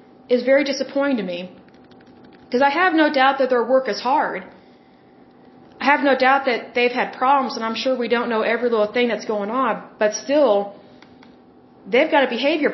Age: 30-49